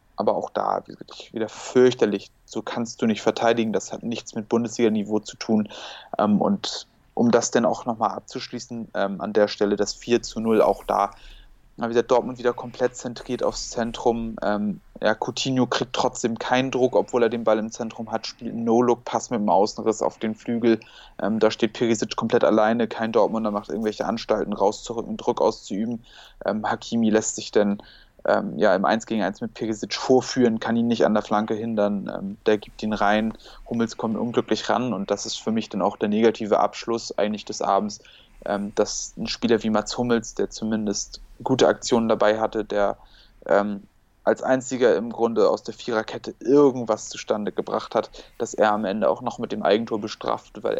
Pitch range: 105-120 Hz